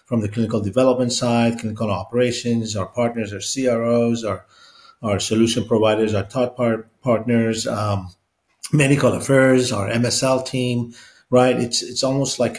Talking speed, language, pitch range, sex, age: 145 wpm, English, 110-140 Hz, male, 40-59